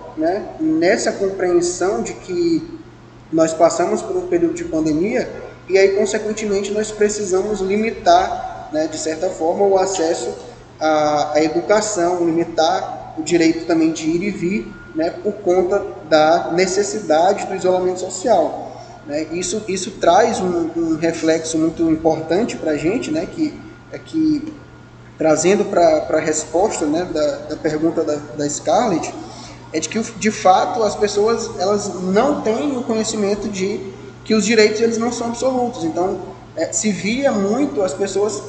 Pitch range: 165-215 Hz